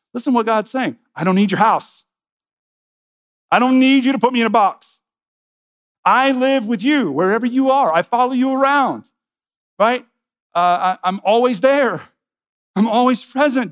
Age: 50-69